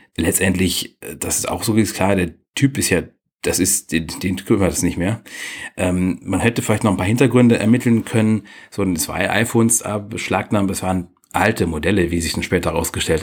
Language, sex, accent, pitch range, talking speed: German, male, German, 90-110 Hz, 195 wpm